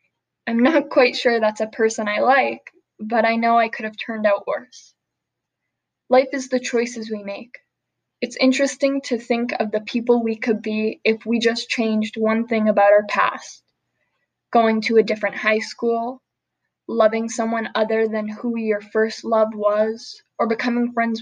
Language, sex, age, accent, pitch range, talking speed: English, female, 10-29, American, 220-240 Hz, 175 wpm